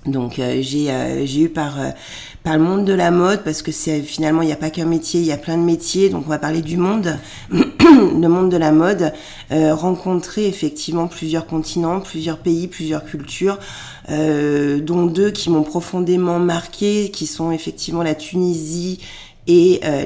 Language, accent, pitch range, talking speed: French, French, 150-175 Hz, 190 wpm